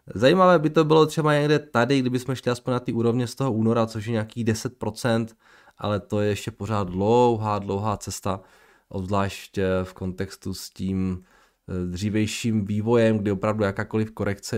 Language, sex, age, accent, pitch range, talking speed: Czech, male, 20-39, native, 100-130 Hz, 160 wpm